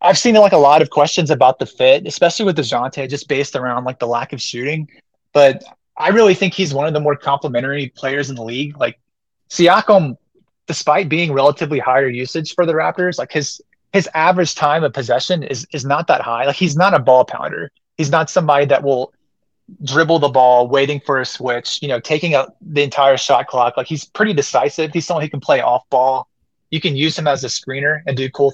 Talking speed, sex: 220 wpm, male